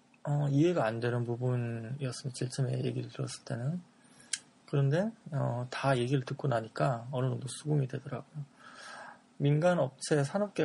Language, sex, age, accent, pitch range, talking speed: English, male, 20-39, Korean, 130-160 Hz, 130 wpm